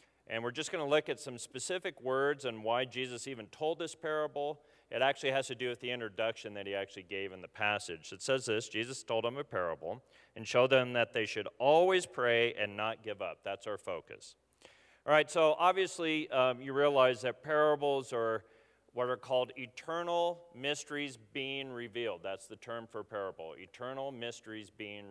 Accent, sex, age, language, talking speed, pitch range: American, male, 40-59, English, 190 wpm, 110-145 Hz